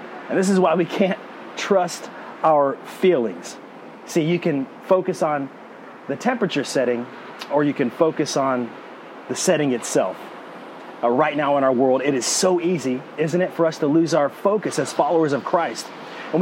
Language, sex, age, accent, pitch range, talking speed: English, male, 30-49, American, 145-185 Hz, 175 wpm